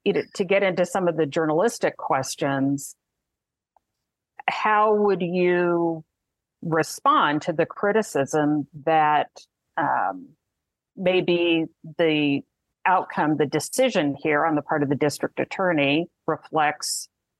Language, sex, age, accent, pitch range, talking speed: English, female, 50-69, American, 150-175 Hz, 105 wpm